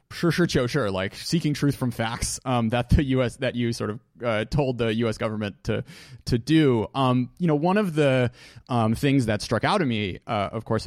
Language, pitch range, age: English, 110-145 Hz, 30-49